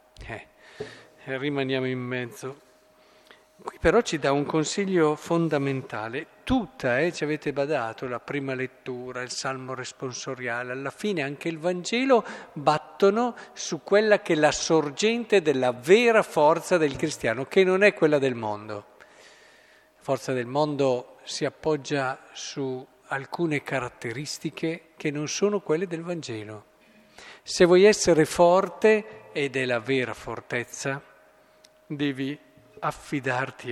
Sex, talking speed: male, 125 wpm